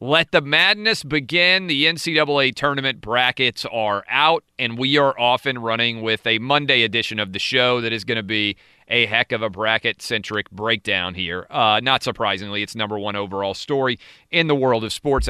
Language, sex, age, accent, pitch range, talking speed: English, male, 40-59, American, 105-125 Hz, 190 wpm